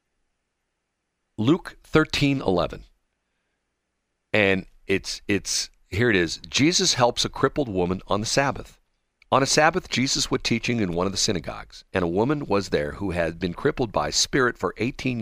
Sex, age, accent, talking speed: male, 50-69, American, 160 wpm